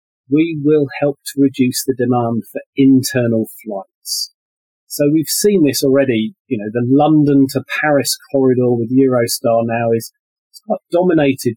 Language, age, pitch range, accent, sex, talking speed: English, 30-49, 115-145 Hz, British, male, 145 wpm